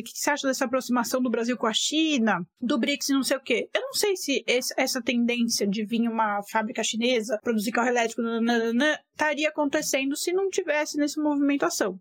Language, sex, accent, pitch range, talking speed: Portuguese, female, Brazilian, 225-290 Hz, 215 wpm